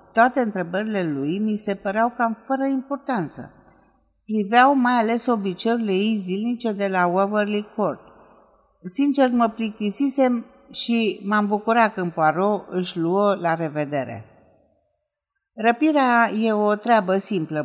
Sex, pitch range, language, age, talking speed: female, 160-225 Hz, Romanian, 50-69, 120 wpm